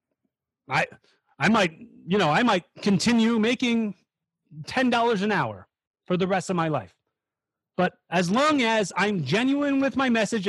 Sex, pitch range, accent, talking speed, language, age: male, 170-240 Hz, American, 155 wpm, English, 30-49